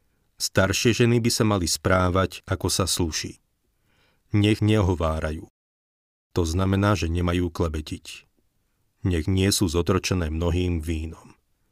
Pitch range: 85-100 Hz